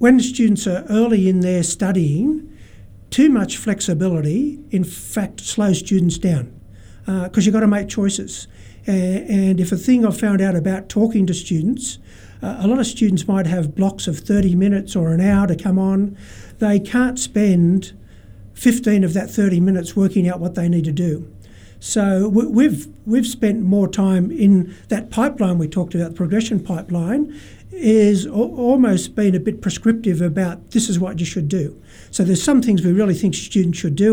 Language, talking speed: English, 185 wpm